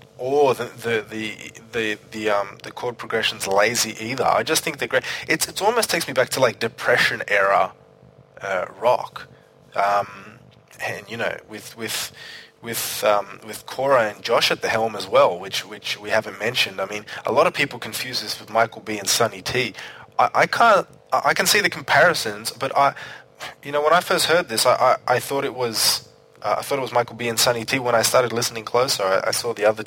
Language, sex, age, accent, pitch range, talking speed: English, male, 20-39, Australian, 105-130 Hz, 215 wpm